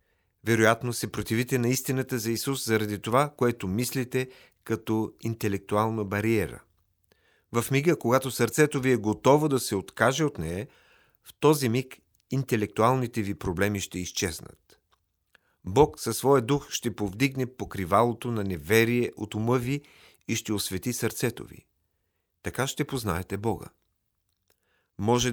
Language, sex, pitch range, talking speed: Bulgarian, male, 105-130 Hz, 135 wpm